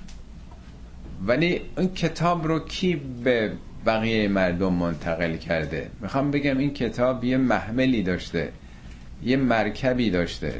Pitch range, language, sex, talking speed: 85-130 Hz, Persian, male, 115 wpm